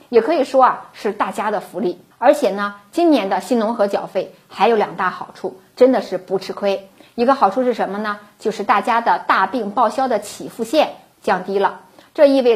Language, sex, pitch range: Chinese, female, 195-265 Hz